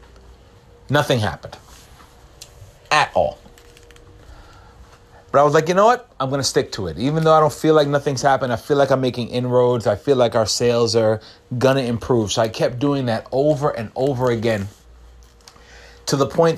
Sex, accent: male, American